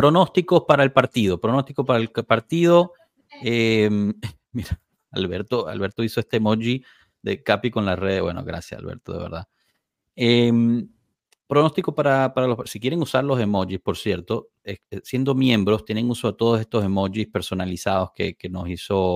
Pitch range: 95-125 Hz